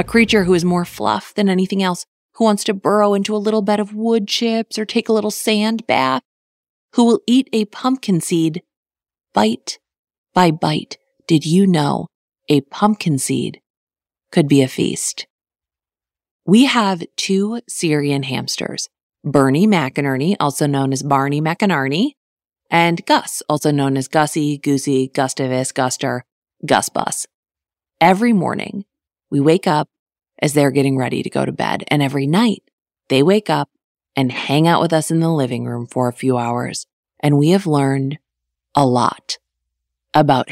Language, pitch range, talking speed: English, 130-195 Hz, 155 wpm